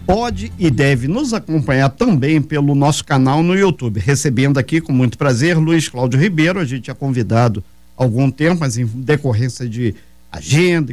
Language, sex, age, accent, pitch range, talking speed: Portuguese, male, 50-69, Brazilian, 130-175 Hz, 170 wpm